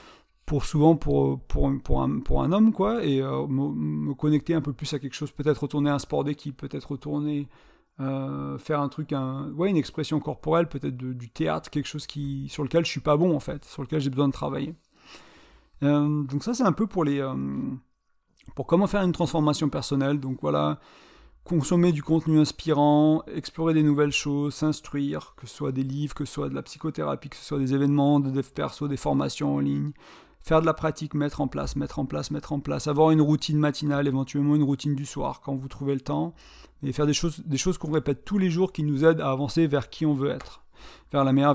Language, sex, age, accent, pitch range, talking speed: French, male, 40-59, French, 140-160 Hz, 230 wpm